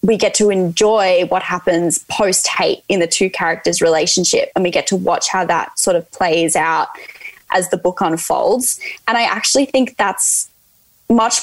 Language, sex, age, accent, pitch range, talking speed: English, female, 10-29, Australian, 185-235 Hz, 175 wpm